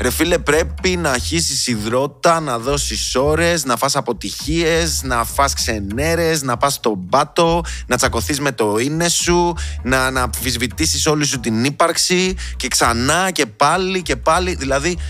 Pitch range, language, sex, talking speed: 100-145 Hz, Greek, male, 145 wpm